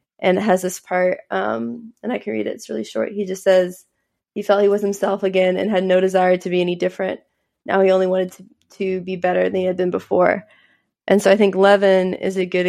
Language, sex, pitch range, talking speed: English, female, 175-190 Hz, 245 wpm